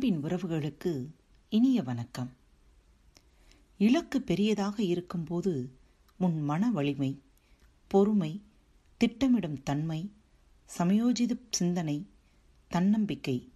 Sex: female